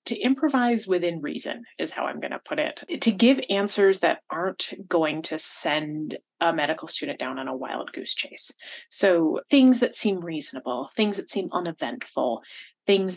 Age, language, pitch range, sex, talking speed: 30-49, English, 175-265 Hz, female, 175 wpm